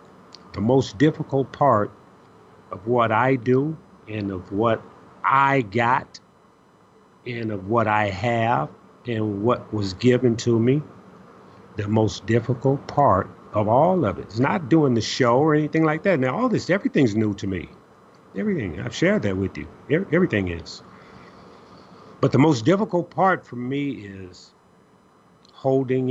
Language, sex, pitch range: English, male, 105-135 Hz